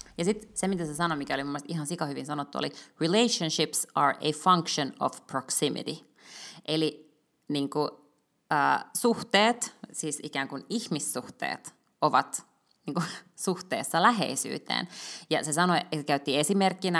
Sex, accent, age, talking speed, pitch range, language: female, native, 30-49, 125 wpm, 145-190 Hz, Finnish